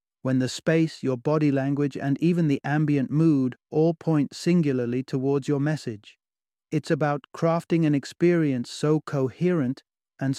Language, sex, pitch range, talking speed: English, male, 130-155 Hz, 145 wpm